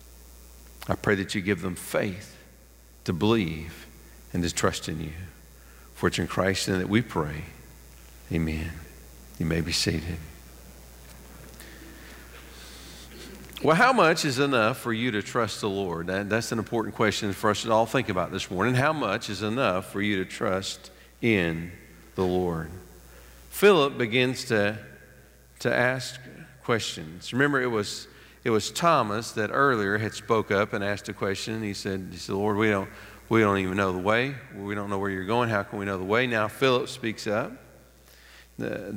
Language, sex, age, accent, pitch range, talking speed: English, male, 50-69, American, 75-115 Hz, 175 wpm